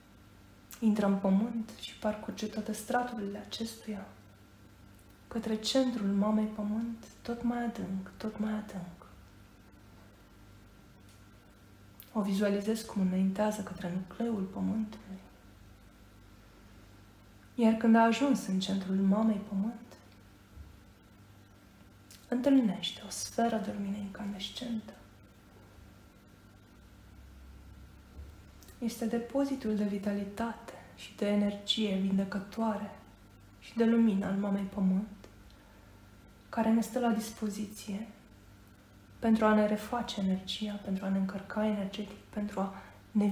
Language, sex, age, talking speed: Romanian, female, 20-39, 100 wpm